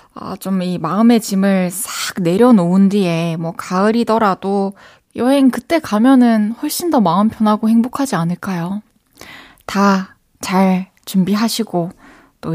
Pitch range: 180-260 Hz